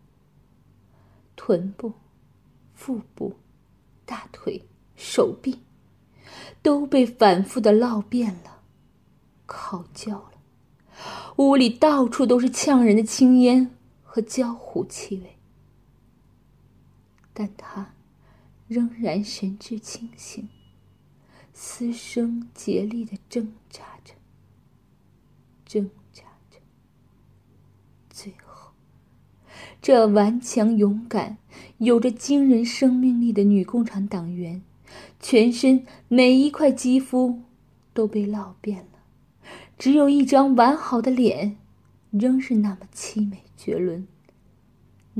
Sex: female